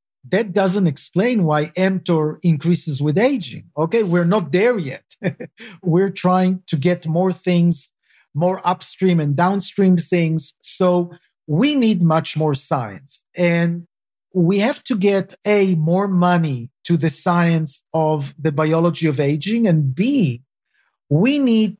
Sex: male